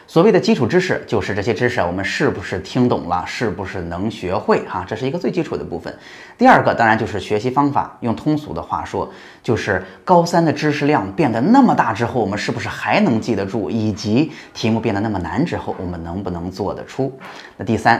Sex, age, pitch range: male, 20-39, 95-135 Hz